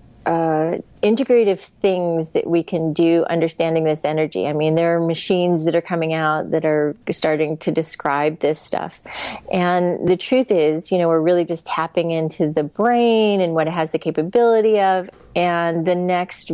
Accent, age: American, 30-49